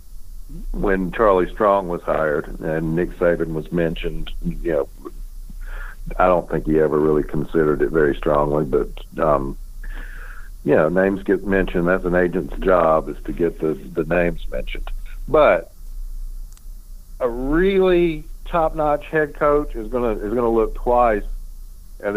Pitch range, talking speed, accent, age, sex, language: 85-115 Hz, 145 wpm, American, 60-79, male, English